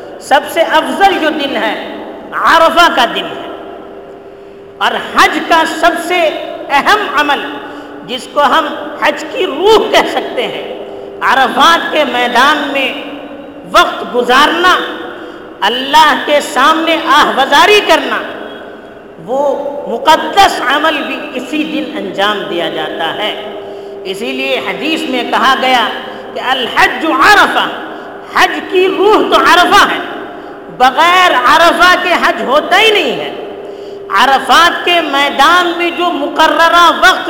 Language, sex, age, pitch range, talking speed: Urdu, female, 50-69, 295-365 Hz, 125 wpm